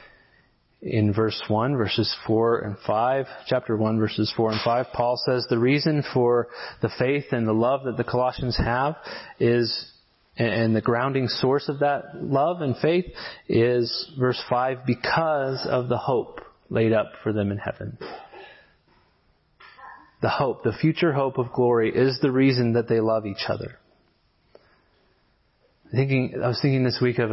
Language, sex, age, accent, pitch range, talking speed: English, male, 30-49, American, 110-125 Hz, 160 wpm